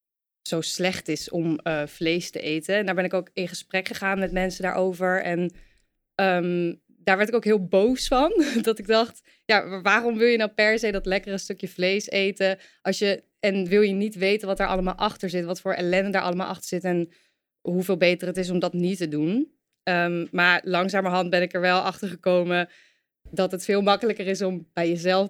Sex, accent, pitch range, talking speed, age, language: female, Dutch, 175-205 Hz, 210 wpm, 20-39, Dutch